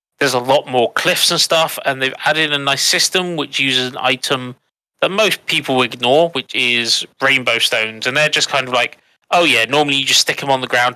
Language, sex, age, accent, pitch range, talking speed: English, male, 30-49, British, 130-175 Hz, 225 wpm